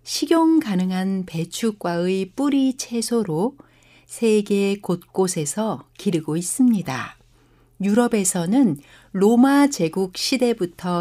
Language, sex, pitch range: Korean, female, 170-235 Hz